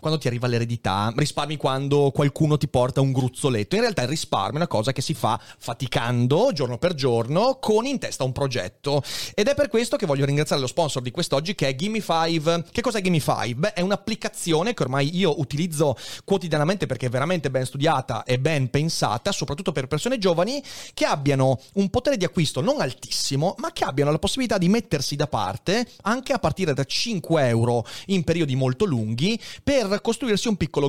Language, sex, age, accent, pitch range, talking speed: Italian, male, 30-49, native, 130-195 Hz, 190 wpm